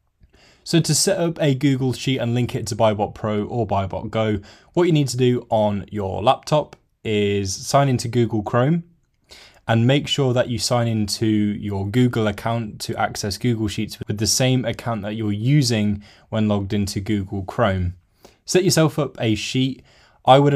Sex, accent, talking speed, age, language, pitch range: male, British, 180 wpm, 10-29, English, 105-125 Hz